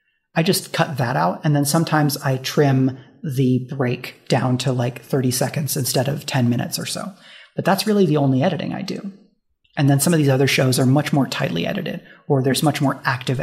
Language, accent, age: English, American, 30-49